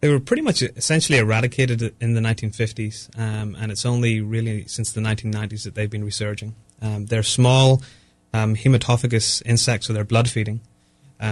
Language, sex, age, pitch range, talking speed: English, male, 30-49, 105-115 Hz, 165 wpm